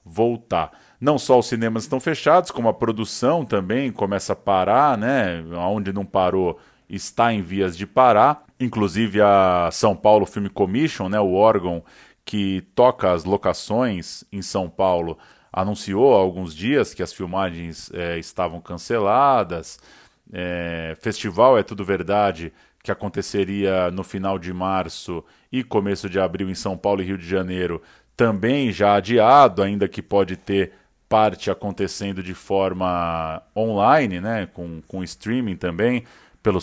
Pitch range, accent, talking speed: 90-105 Hz, Brazilian, 145 wpm